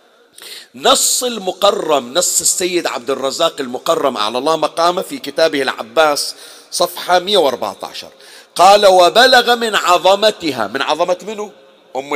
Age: 50-69